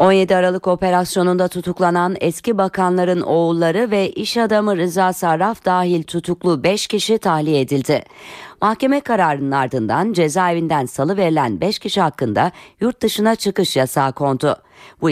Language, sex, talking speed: Turkish, female, 130 wpm